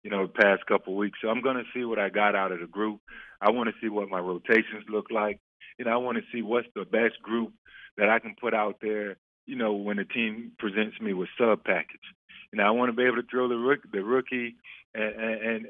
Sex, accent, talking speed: male, American, 270 wpm